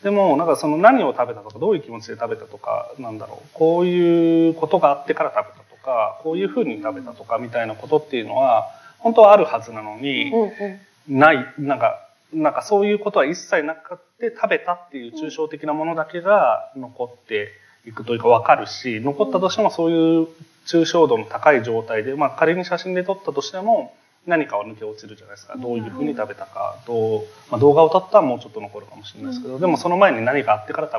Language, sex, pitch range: Japanese, male, 125-205 Hz